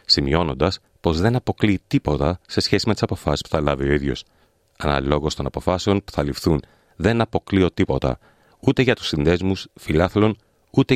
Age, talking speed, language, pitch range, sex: 30-49, 165 wpm, Greek, 75-100 Hz, male